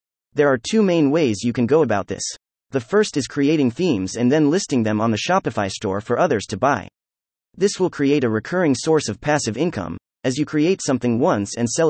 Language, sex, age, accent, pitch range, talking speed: English, male, 30-49, American, 105-160 Hz, 215 wpm